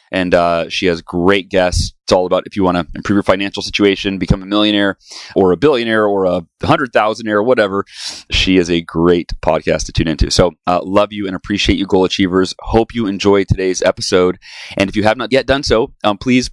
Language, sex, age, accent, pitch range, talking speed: English, male, 30-49, American, 95-110 Hz, 220 wpm